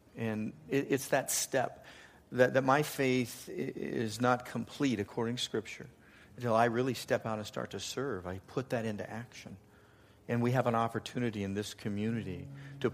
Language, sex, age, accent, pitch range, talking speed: English, male, 50-69, American, 95-115 Hz, 165 wpm